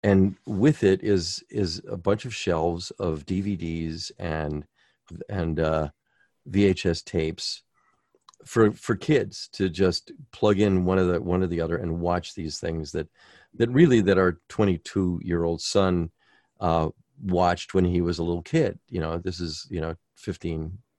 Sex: male